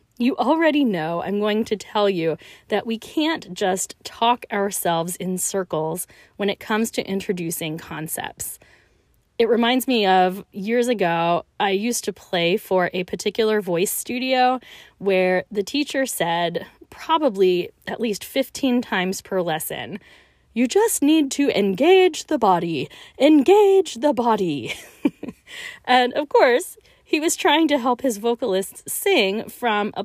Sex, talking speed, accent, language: female, 140 wpm, American, English